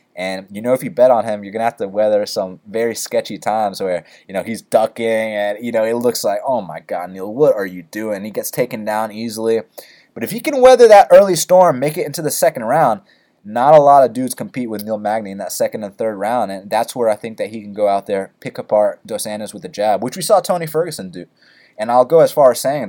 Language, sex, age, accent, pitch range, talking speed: English, male, 20-39, American, 105-130 Hz, 265 wpm